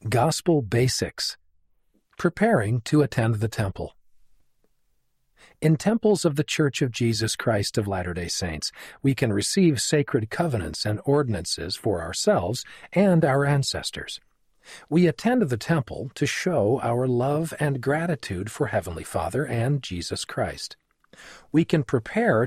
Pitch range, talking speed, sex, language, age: 105-160 Hz, 130 wpm, male, English, 50-69